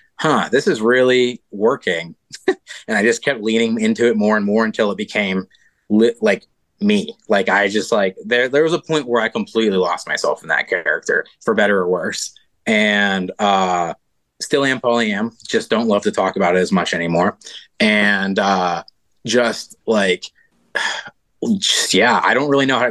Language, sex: English, male